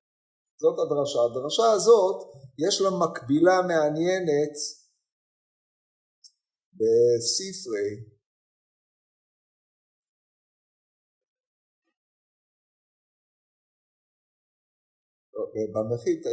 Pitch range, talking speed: 150-235 Hz, 35 wpm